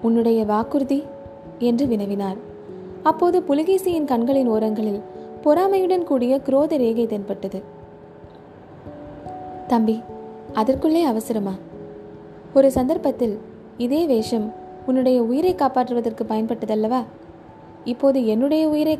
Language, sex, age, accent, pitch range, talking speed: Tamil, female, 20-39, native, 205-270 Hz, 85 wpm